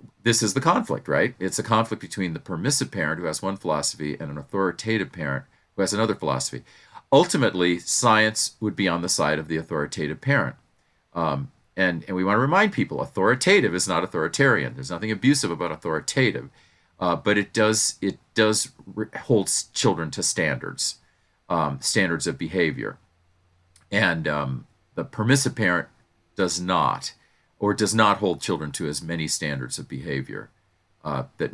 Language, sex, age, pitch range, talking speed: English, male, 40-59, 75-110 Hz, 165 wpm